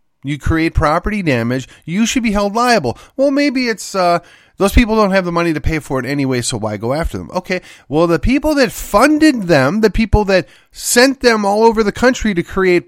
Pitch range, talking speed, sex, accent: 130-215 Hz, 220 wpm, male, American